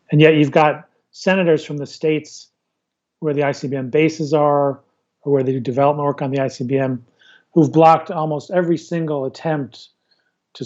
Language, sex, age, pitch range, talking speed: English, male, 40-59, 140-160 Hz, 165 wpm